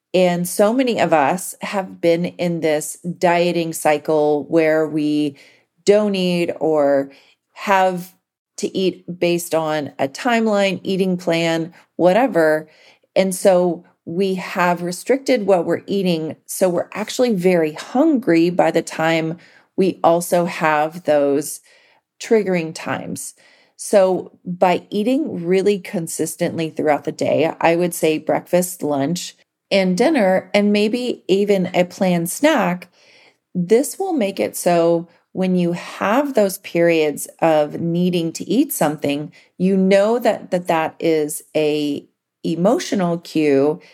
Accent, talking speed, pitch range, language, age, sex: American, 125 wpm, 160-195 Hz, English, 40-59, female